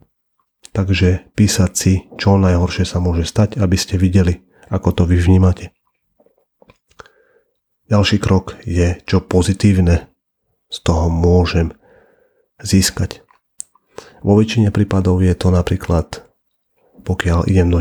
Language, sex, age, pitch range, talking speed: Slovak, male, 40-59, 90-100 Hz, 110 wpm